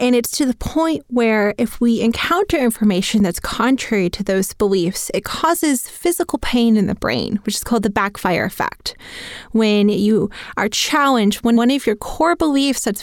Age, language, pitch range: 20-39, English, 215-275 Hz